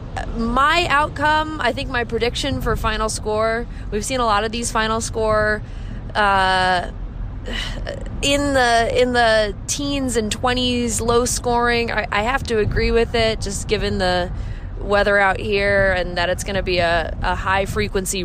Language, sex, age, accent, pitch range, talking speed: English, female, 20-39, American, 180-240 Hz, 160 wpm